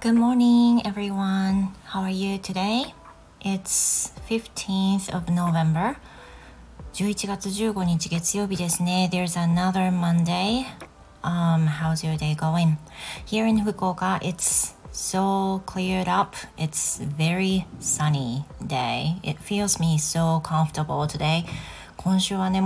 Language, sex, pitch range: Japanese, female, 155-190 Hz